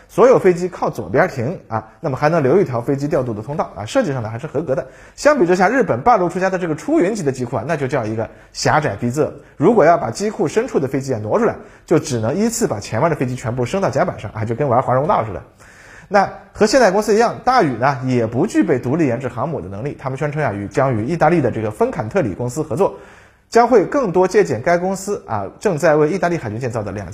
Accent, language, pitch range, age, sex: native, Chinese, 120-200 Hz, 30-49, male